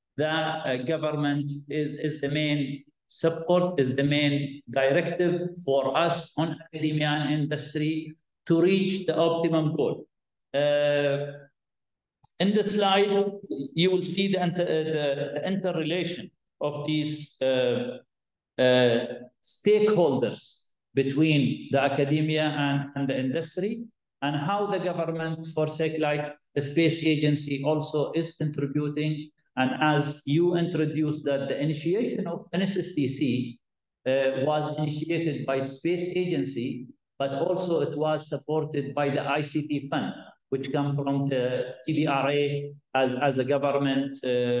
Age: 50-69